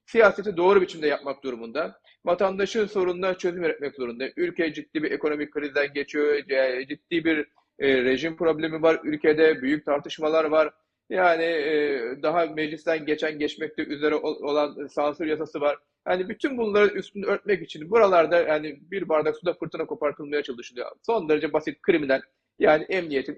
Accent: native